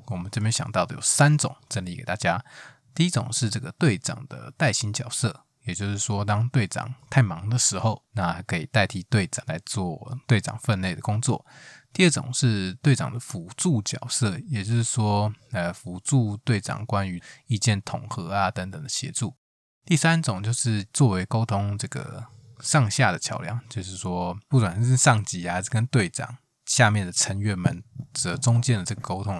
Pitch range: 105-140 Hz